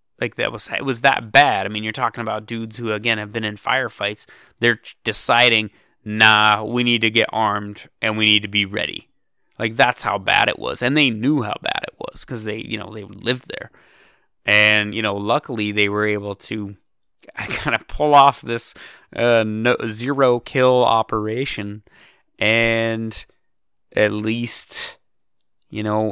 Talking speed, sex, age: 175 wpm, male, 20-39